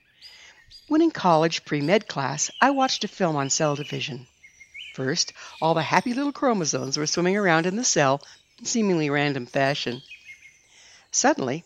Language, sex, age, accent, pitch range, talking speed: English, female, 60-79, American, 140-195 Hz, 150 wpm